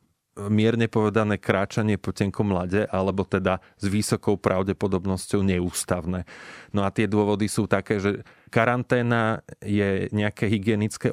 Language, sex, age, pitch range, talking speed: Slovak, male, 30-49, 95-110 Hz, 125 wpm